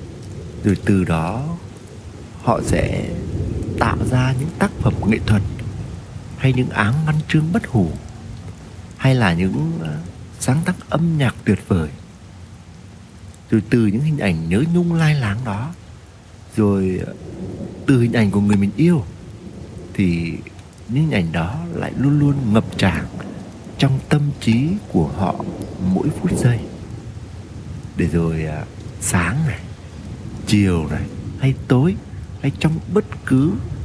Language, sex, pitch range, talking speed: Vietnamese, male, 90-130 Hz, 135 wpm